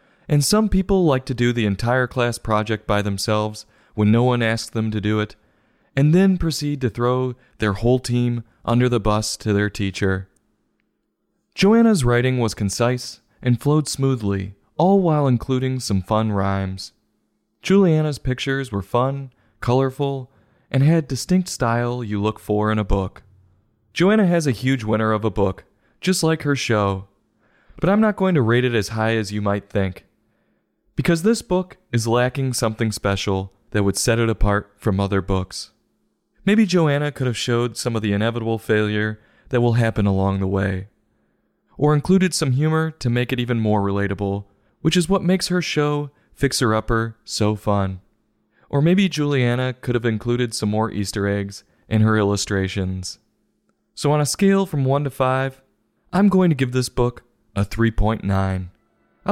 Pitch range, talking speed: 105-140 Hz, 170 wpm